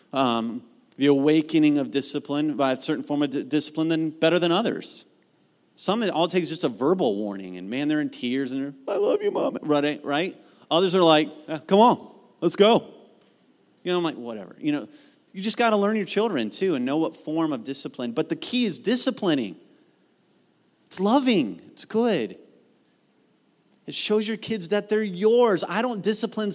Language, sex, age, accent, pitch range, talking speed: English, male, 30-49, American, 155-220 Hz, 190 wpm